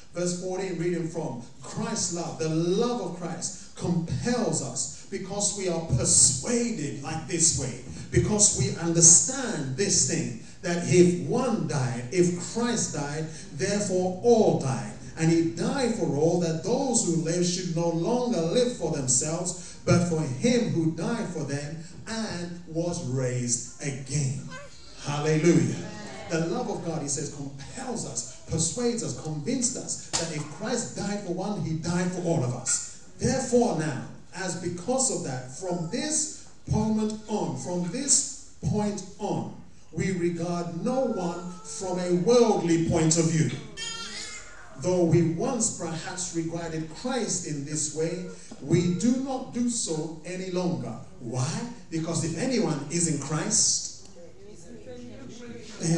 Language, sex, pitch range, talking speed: English, male, 160-200 Hz, 145 wpm